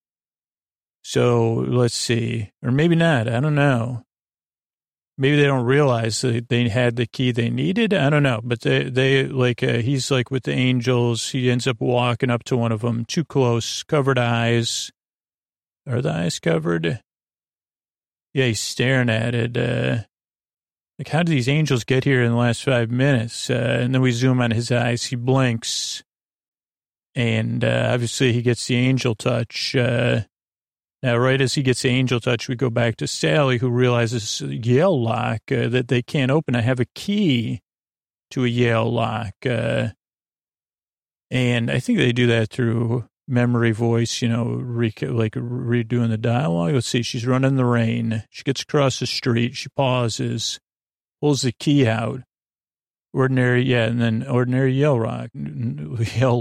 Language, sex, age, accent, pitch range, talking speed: English, male, 40-59, American, 115-130 Hz, 170 wpm